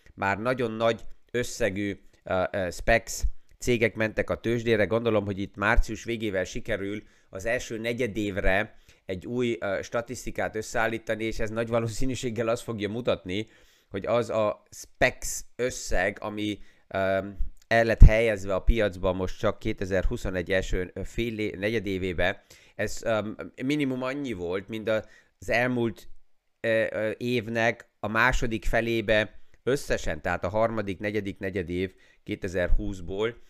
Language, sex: Hungarian, male